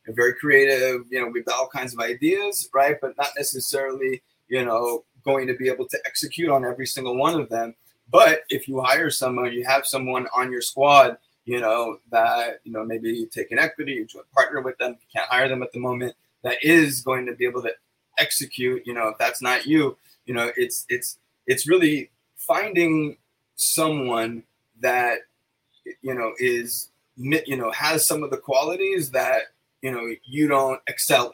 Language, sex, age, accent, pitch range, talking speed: English, male, 20-39, American, 120-155 Hz, 190 wpm